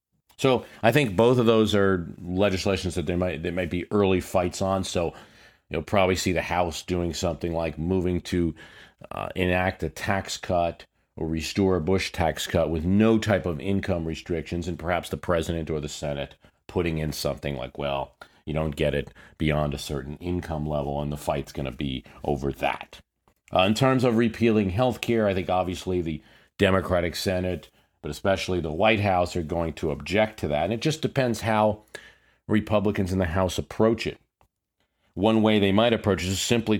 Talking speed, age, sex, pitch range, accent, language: 190 wpm, 40-59, male, 80-100 Hz, American, English